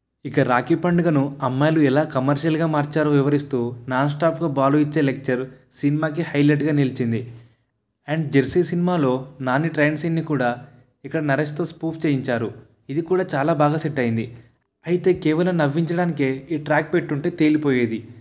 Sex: male